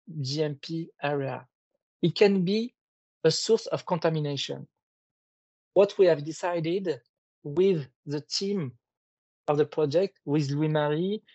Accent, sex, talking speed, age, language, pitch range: French, male, 115 wpm, 40-59, English, 155-200 Hz